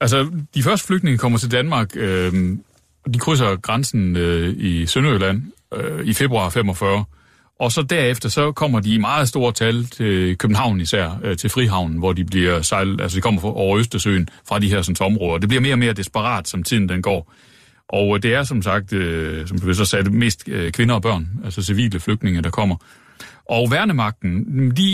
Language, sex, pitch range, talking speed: Danish, male, 100-135 Hz, 195 wpm